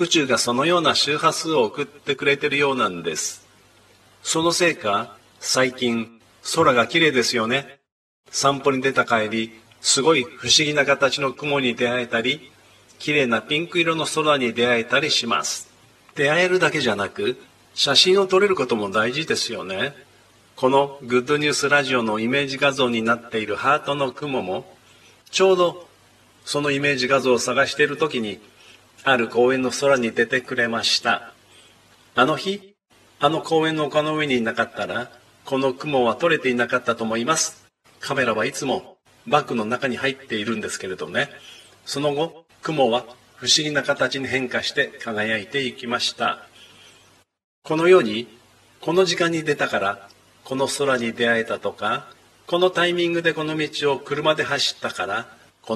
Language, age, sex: Japanese, 40-59, male